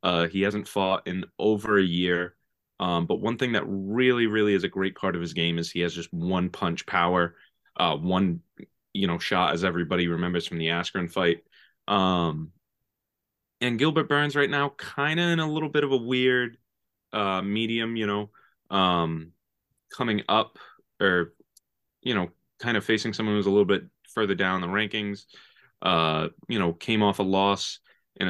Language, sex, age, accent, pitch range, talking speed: English, male, 20-39, American, 85-110 Hz, 180 wpm